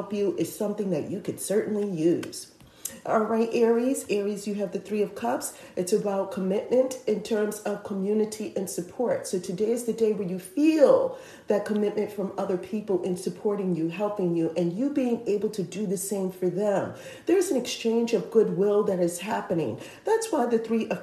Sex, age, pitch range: female, 40-59, 185-230 Hz